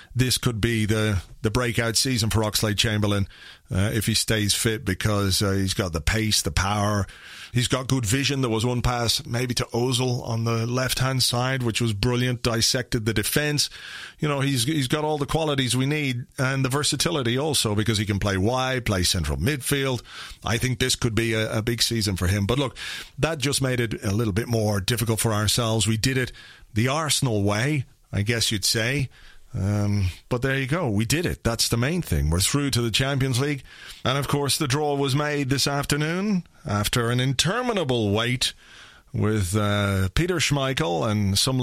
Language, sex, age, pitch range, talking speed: English, male, 40-59, 110-135 Hz, 195 wpm